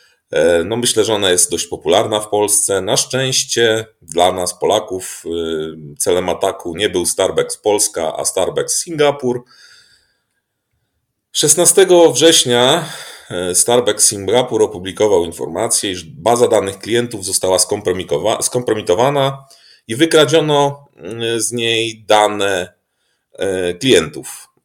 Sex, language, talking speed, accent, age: male, Polish, 100 wpm, native, 30-49